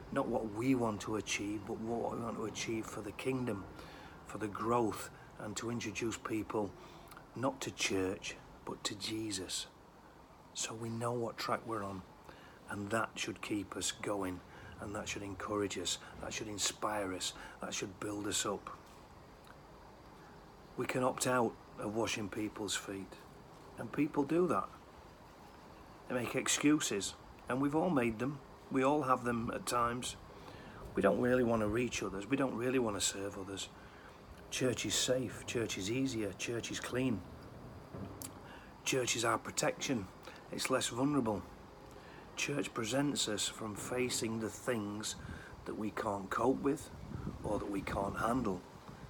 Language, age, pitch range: English, 40-59, 100-125 Hz